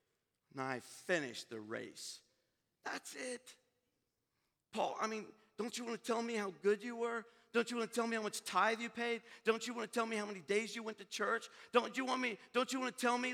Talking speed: 245 wpm